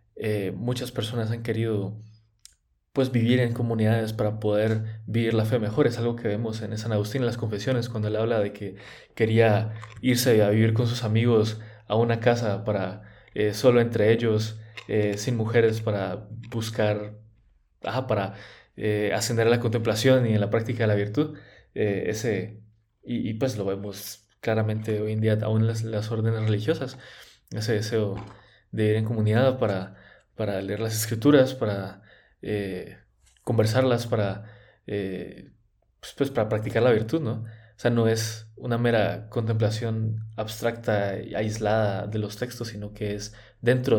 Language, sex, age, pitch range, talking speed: Spanish, male, 20-39, 105-115 Hz, 160 wpm